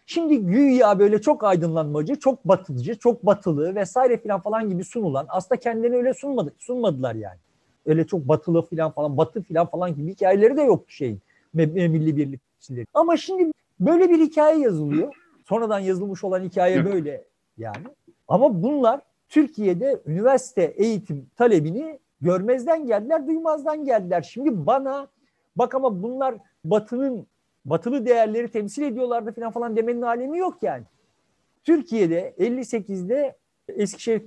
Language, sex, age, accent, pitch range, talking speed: Turkish, male, 50-69, native, 170-255 Hz, 135 wpm